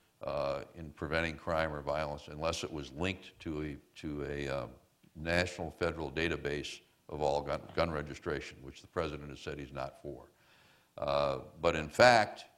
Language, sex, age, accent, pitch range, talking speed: English, male, 60-79, American, 75-90 Hz, 165 wpm